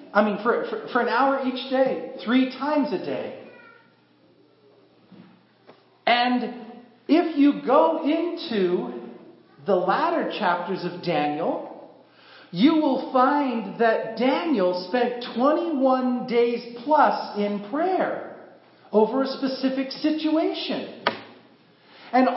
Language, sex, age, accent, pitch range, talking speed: English, male, 40-59, American, 220-290 Hz, 100 wpm